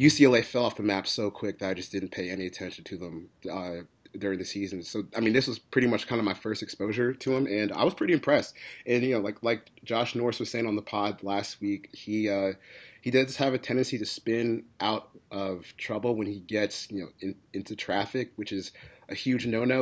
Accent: American